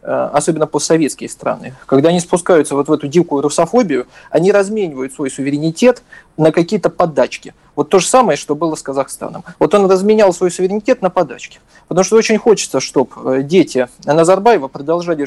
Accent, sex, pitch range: native, male, 155-205 Hz